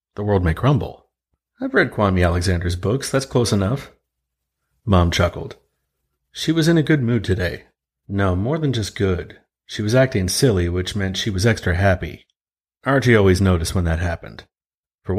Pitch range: 95-115 Hz